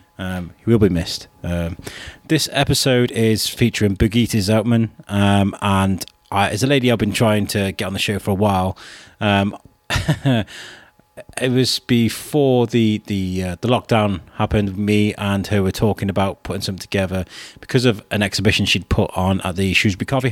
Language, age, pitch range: English, 30-49, 100-120 Hz